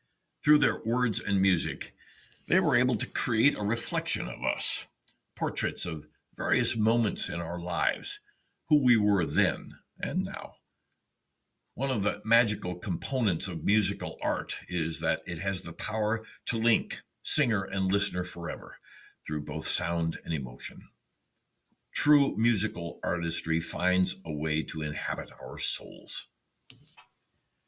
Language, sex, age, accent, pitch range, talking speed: English, male, 60-79, American, 80-110 Hz, 135 wpm